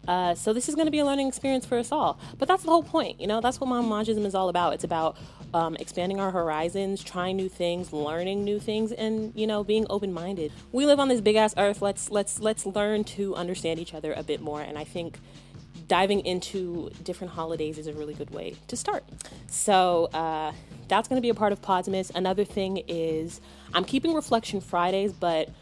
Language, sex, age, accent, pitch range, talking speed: English, female, 20-39, American, 160-215 Hz, 220 wpm